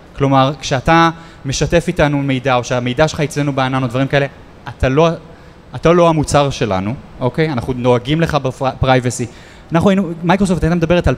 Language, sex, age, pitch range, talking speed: Hebrew, male, 20-39, 130-170 Hz, 155 wpm